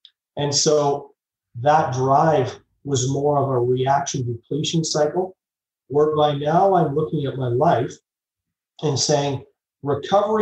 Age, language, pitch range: 30-49, English, 125-160 Hz